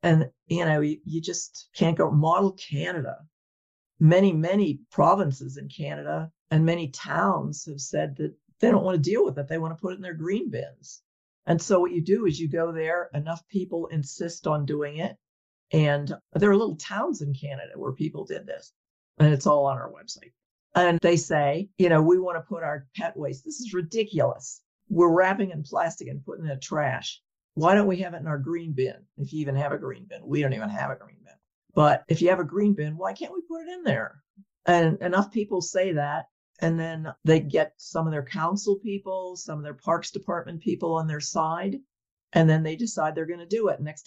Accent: American